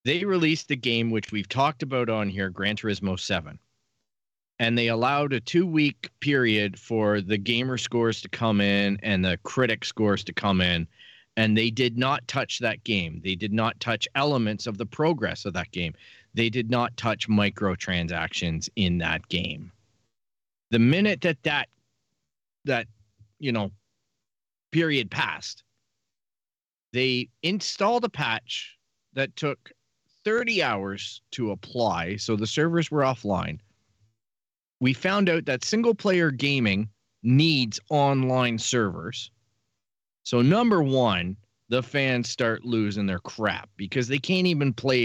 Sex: male